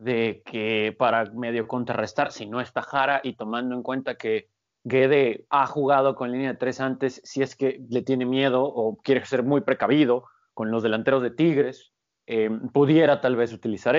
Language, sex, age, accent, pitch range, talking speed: Spanish, male, 30-49, Mexican, 125-170 Hz, 185 wpm